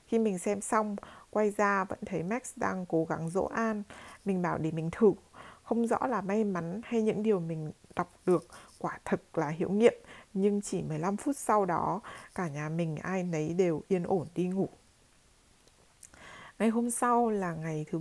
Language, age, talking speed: Vietnamese, 20-39, 190 wpm